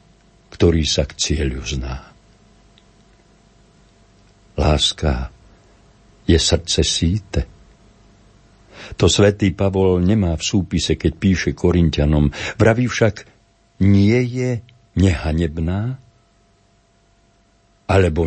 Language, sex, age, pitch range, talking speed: Slovak, male, 60-79, 85-105 Hz, 80 wpm